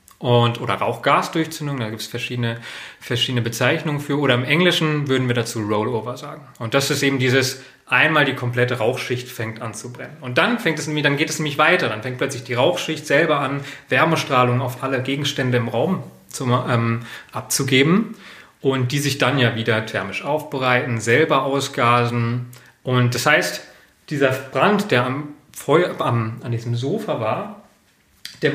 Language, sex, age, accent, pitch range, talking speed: German, male, 30-49, German, 120-150 Hz, 170 wpm